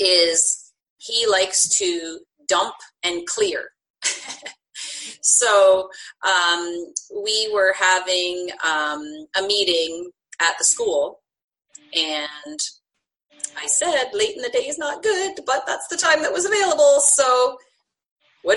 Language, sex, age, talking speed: English, female, 30-49, 120 wpm